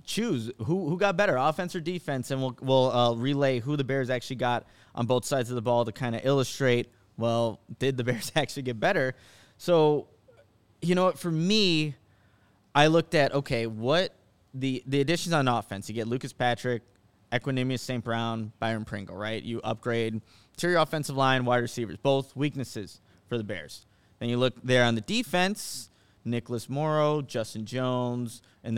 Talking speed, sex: 180 wpm, male